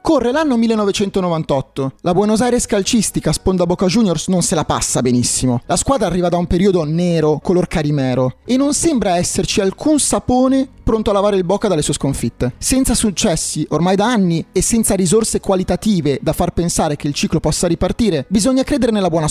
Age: 30-49